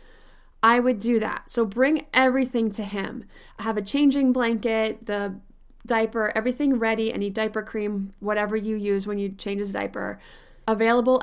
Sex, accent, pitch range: female, American, 210-255 Hz